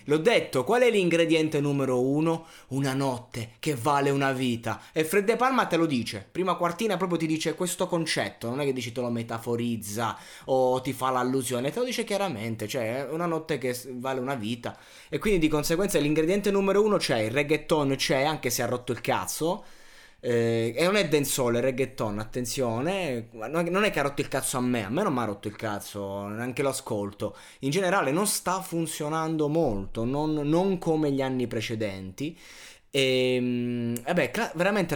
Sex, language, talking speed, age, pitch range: male, Italian, 185 wpm, 20-39, 130-180 Hz